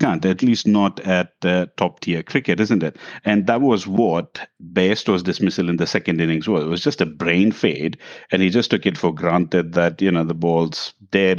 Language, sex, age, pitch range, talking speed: English, male, 50-69, 85-95 Hz, 220 wpm